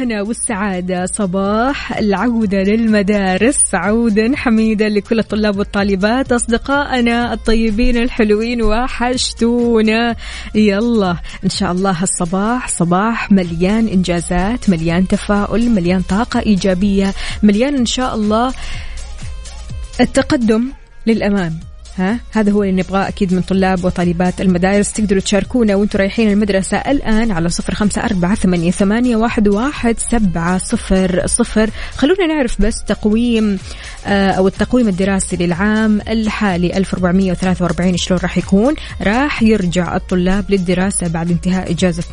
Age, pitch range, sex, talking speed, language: 20-39, 185-225 Hz, female, 100 wpm, Arabic